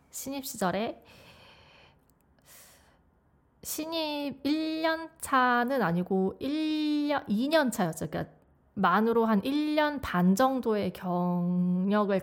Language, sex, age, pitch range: Korean, female, 20-39, 185-260 Hz